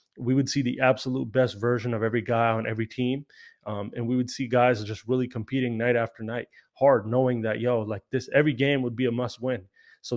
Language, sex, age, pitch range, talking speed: English, male, 20-39, 115-130 Hz, 230 wpm